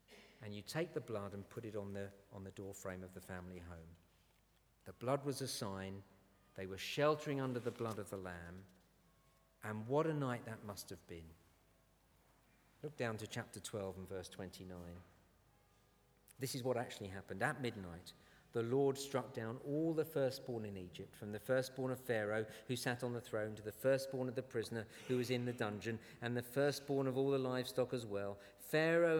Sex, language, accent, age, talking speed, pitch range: male, English, British, 50-69, 195 wpm, 100-140 Hz